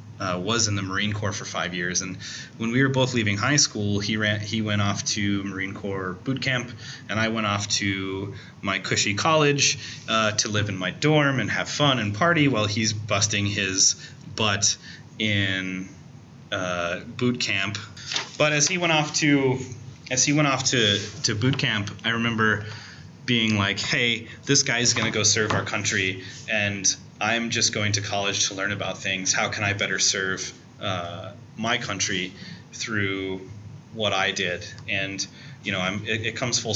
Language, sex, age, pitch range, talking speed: English, male, 30-49, 100-120 Hz, 185 wpm